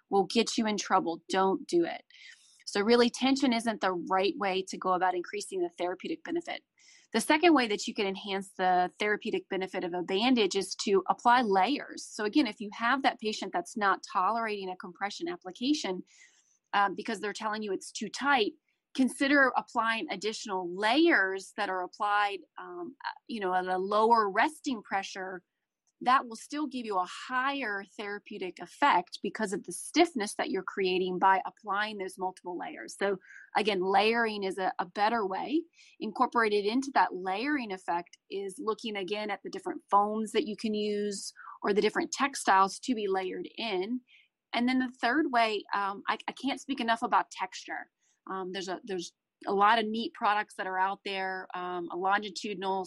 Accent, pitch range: American, 190-260 Hz